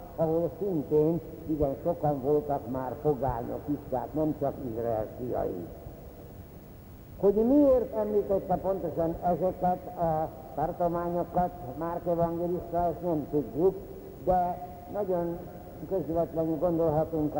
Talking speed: 95 wpm